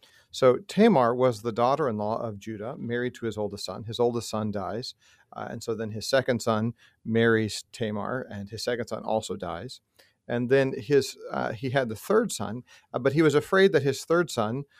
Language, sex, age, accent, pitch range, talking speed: English, male, 40-59, American, 105-130 Hz, 200 wpm